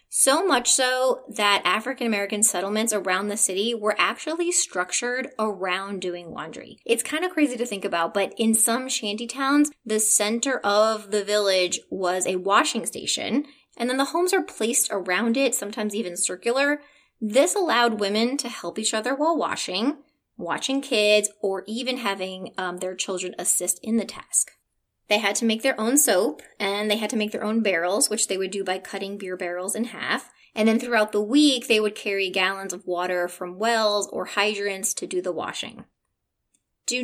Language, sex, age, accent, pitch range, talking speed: English, female, 20-39, American, 195-255 Hz, 180 wpm